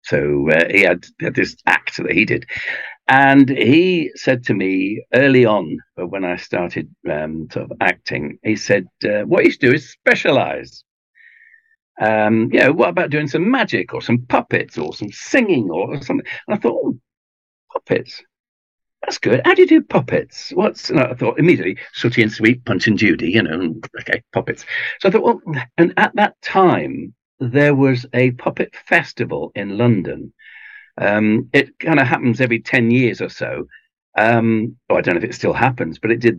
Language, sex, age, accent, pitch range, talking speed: English, male, 60-79, British, 110-155 Hz, 185 wpm